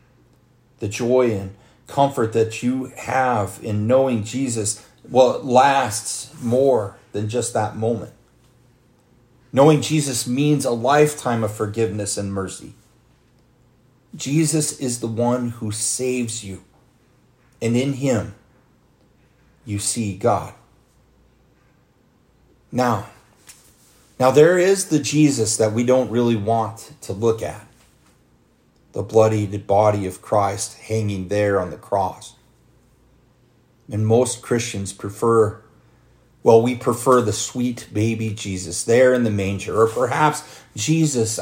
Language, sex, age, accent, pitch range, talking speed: English, male, 40-59, American, 105-125 Hz, 120 wpm